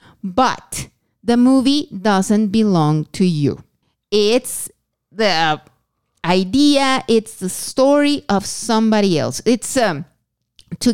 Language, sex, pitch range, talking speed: English, female, 185-250 Hz, 105 wpm